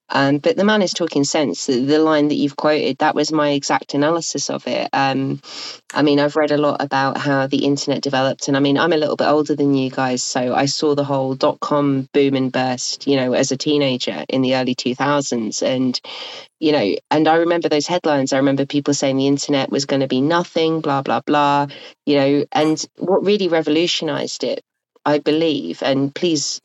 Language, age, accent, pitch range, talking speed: English, 30-49, British, 135-155 Hz, 210 wpm